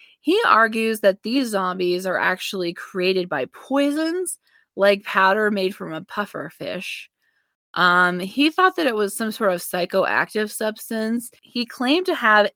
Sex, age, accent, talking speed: female, 20-39, American, 155 wpm